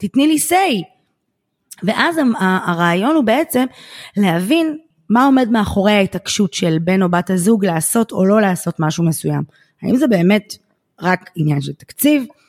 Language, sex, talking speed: Hebrew, female, 145 wpm